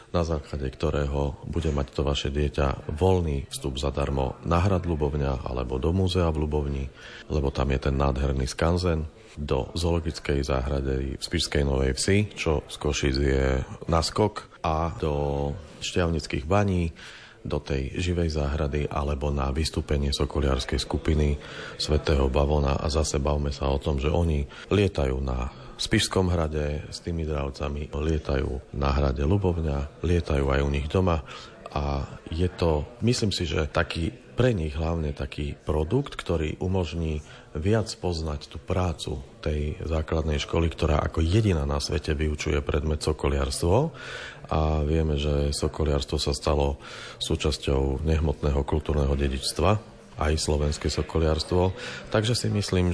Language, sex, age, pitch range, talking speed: Slovak, male, 40-59, 70-85 Hz, 140 wpm